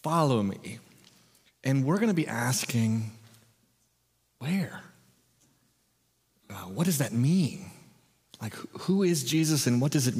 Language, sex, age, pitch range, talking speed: English, male, 30-49, 110-145 Hz, 130 wpm